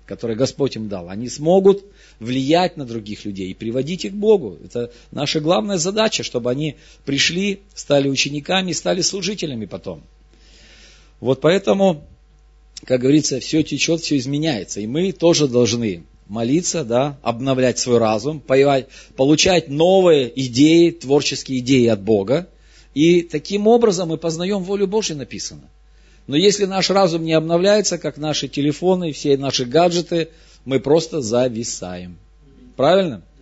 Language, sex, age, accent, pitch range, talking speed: Russian, male, 40-59, native, 130-180 Hz, 135 wpm